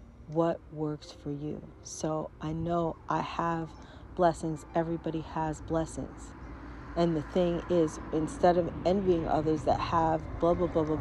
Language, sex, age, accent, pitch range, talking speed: English, female, 40-59, American, 145-175 Hz, 145 wpm